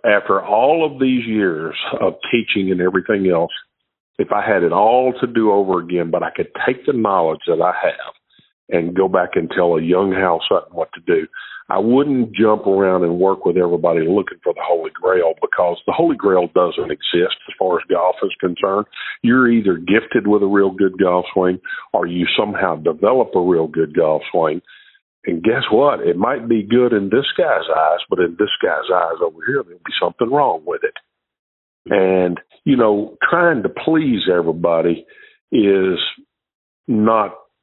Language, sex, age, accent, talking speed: English, male, 50-69, American, 185 wpm